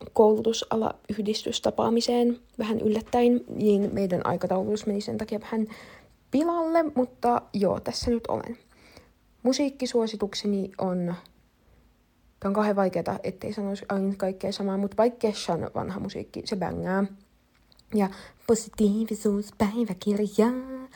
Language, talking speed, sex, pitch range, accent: Finnish, 105 wpm, female, 200-235 Hz, native